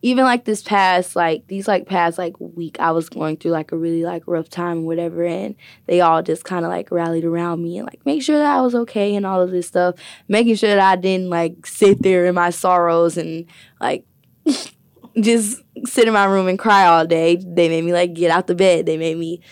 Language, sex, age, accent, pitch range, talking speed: English, female, 10-29, American, 165-185 Hz, 240 wpm